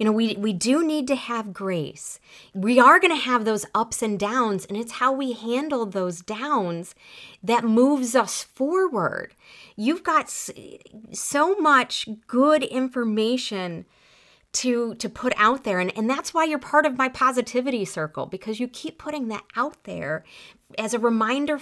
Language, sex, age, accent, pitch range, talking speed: English, female, 30-49, American, 195-265 Hz, 165 wpm